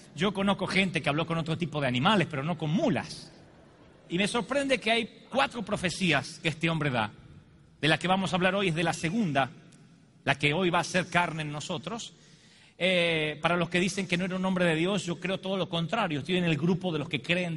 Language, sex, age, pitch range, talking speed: Spanish, male, 40-59, 160-200 Hz, 240 wpm